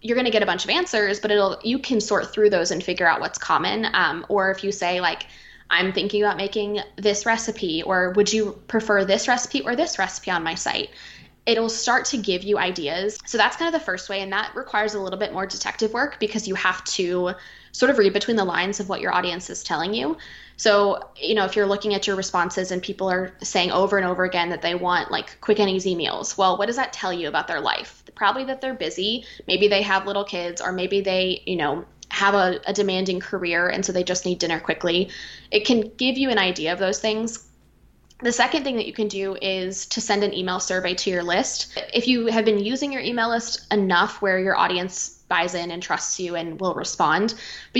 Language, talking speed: English, 235 wpm